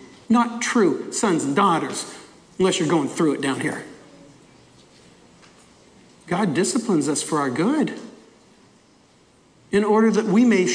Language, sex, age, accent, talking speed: English, male, 50-69, American, 130 wpm